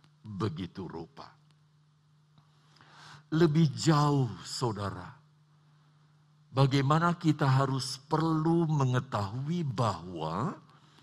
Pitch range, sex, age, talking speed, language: 145-170 Hz, male, 50-69, 60 wpm, Indonesian